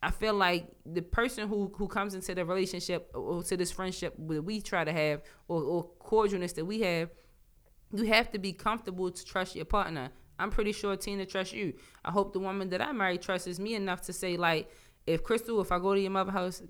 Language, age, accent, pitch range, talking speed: English, 20-39, American, 155-190 Hz, 225 wpm